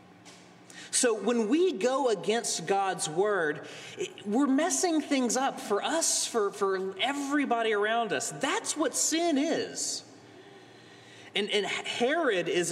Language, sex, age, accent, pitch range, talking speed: English, male, 30-49, American, 165-240 Hz, 125 wpm